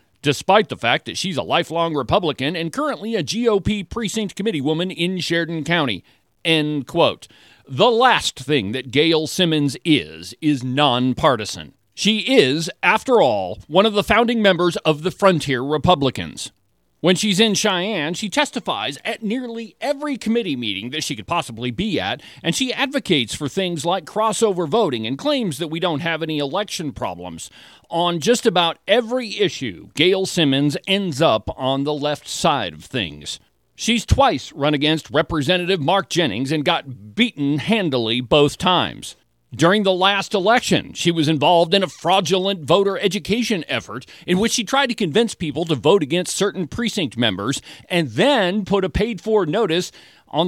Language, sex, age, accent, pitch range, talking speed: English, male, 40-59, American, 140-200 Hz, 165 wpm